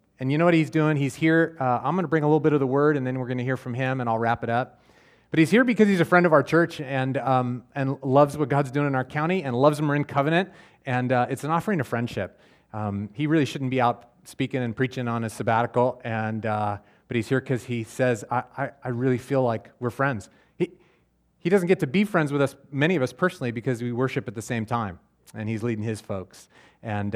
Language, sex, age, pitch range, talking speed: English, male, 30-49, 115-145 Hz, 265 wpm